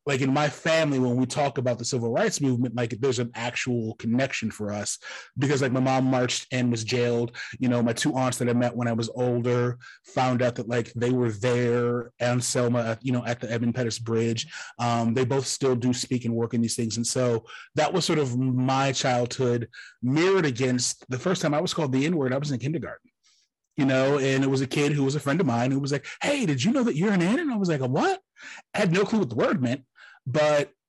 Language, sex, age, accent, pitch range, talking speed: English, male, 30-49, American, 120-150 Hz, 245 wpm